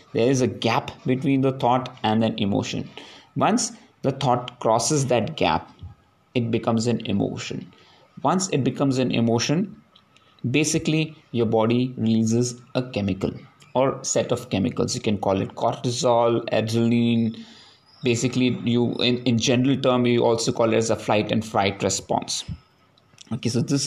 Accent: Indian